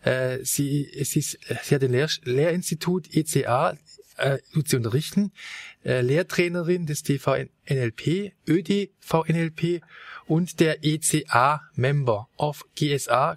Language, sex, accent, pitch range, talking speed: German, male, German, 135-165 Hz, 100 wpm